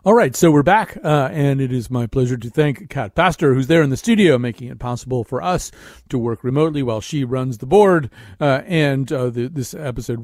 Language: English